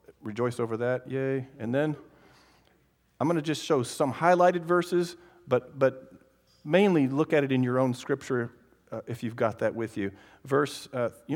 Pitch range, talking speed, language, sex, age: 115-170 Hz, 180 wpm, English, male, 40-59